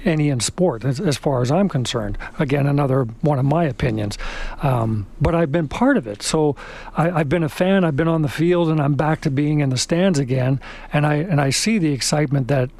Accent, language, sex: American, English, male